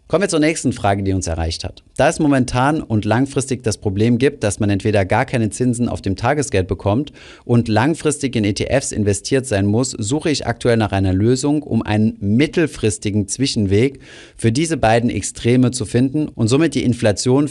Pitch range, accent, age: 105-135 Hz, German, 30-49